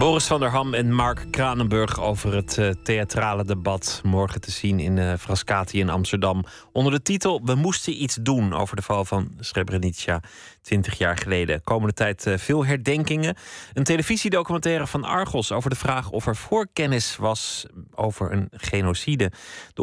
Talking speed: 165 wpm